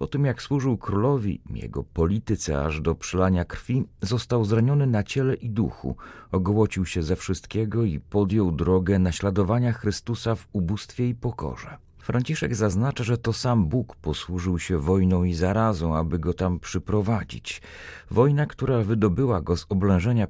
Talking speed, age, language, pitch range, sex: 150 wpm, 40-59, Polish, 90-120 Hz, male